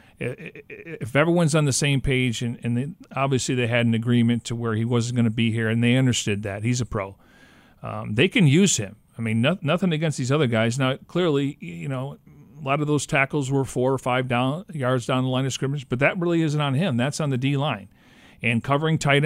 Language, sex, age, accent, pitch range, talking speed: English, male, 40-59, American, 125-150 Hz, 225 wpm